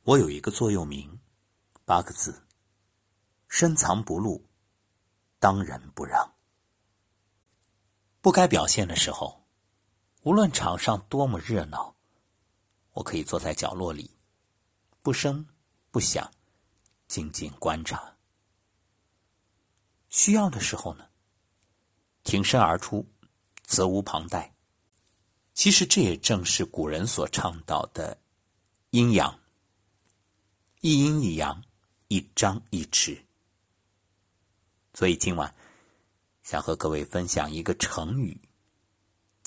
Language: Chinese